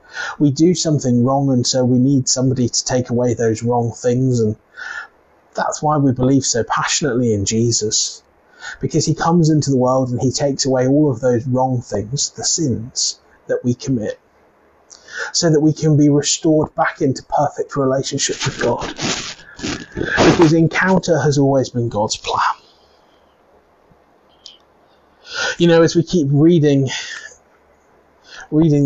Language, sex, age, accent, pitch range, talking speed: English, male, 30-49, British, 130-160 Hz, 145 wpm